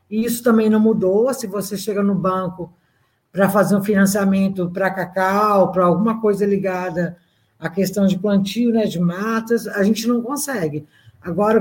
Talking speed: 160 wpm